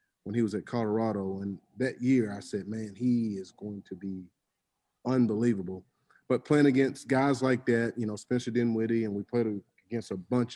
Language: English